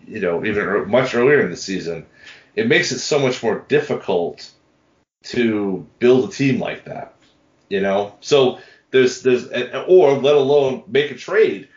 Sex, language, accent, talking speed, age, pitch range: male, English, American, 175 wpm, 30-49, 110-150 Hz